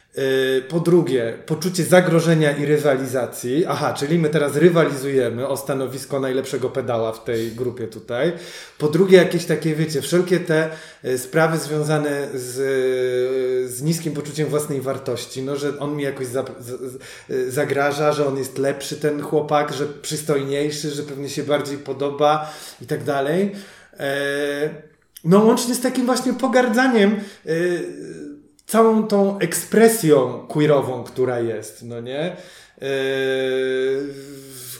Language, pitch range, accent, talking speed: Polish, 135-160 Hz, native, 120 wpm